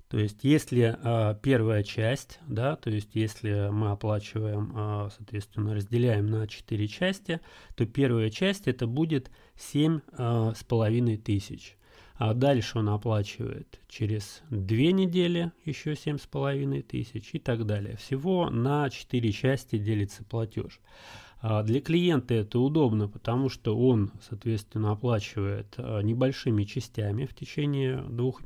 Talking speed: 135 wpm